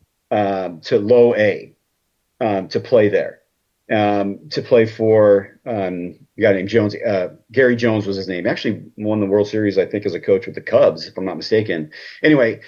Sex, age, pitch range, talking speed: male, 30-49, 105-150 Hz, 195 wpm